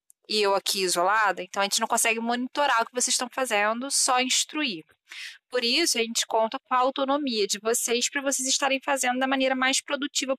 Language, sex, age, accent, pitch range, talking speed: Portuguese, female, 10-29, Brazilian, 220-275 Hz, 200 wpm